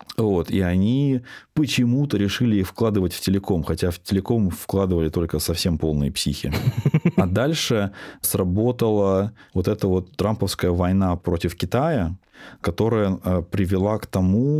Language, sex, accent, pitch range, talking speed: Russian, male, native, 90-110 Hz, 125 wpm